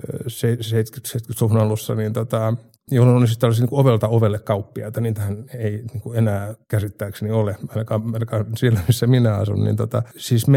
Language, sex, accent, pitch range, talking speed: Finnish, male, native, 105-120 Hz, 155 wpm